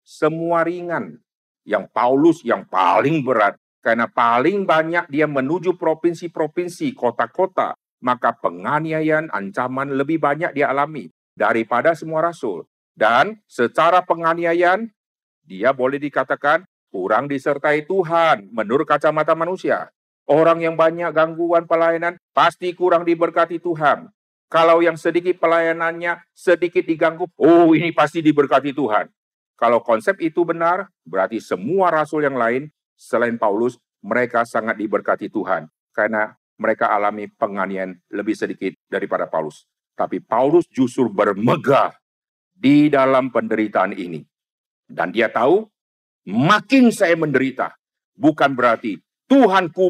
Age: 50-69